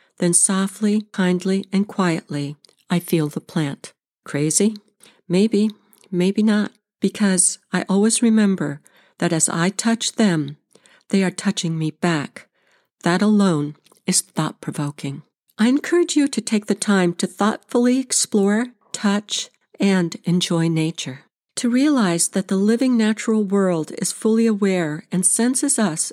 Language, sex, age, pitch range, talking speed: English, female, 60-79, 175-220 Hz, 135 wpm